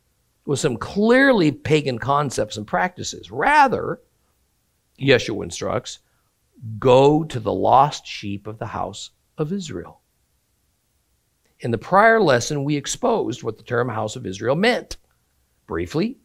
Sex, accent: male, American